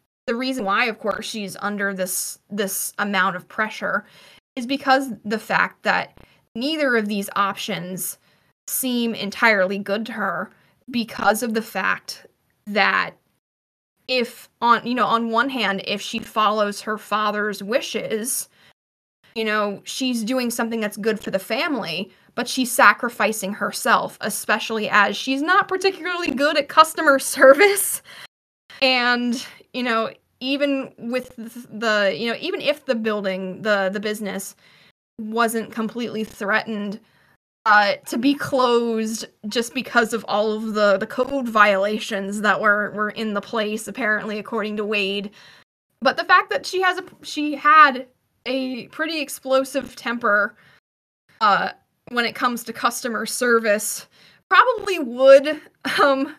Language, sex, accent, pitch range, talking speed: English, female, American, 210-265 Hz, 140 wpm